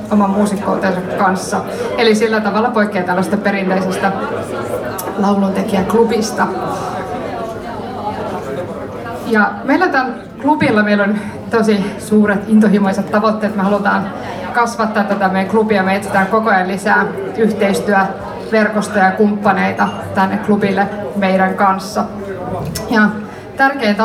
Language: Finnish